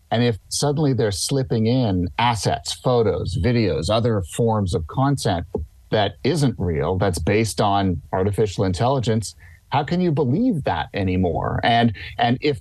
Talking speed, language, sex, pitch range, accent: 145 wpm, English, male, 100-130 Hz, American